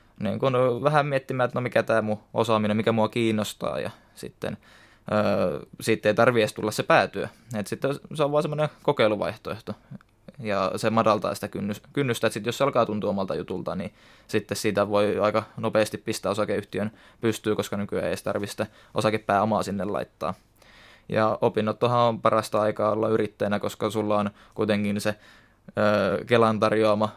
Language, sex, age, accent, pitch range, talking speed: Finnish, male, 20-39, native, 105-115 Hz, 160 wpm